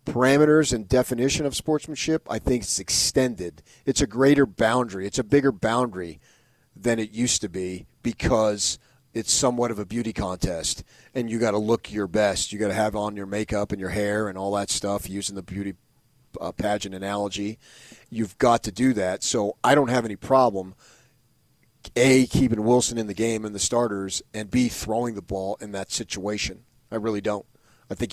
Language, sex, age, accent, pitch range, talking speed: English, male, 40-59, American, 105-125 Hz, 190 wpm